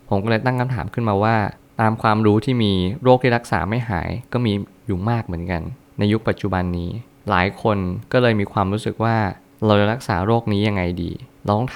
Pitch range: 100-115 Hz